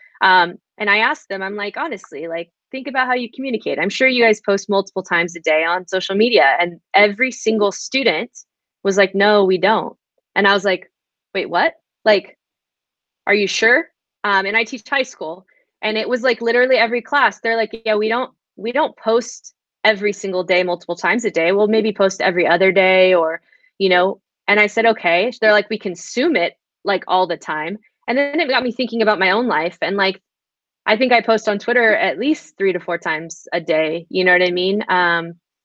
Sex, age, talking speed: female, 20-39, 215 wpm